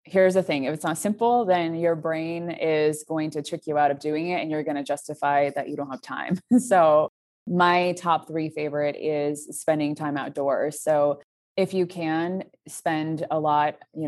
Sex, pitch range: female, 150-165 Hz